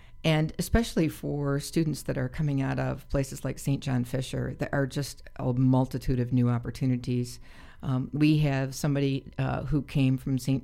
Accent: American